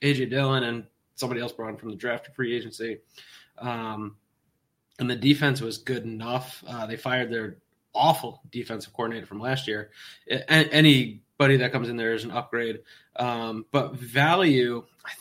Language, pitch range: English, 115-135 Hz